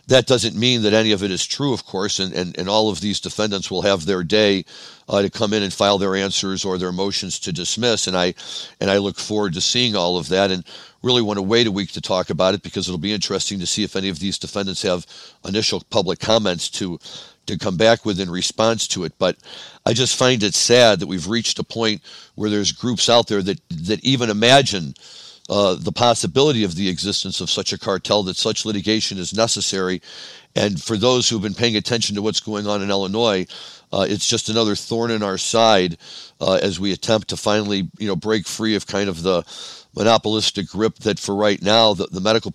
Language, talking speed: English, 225 wpm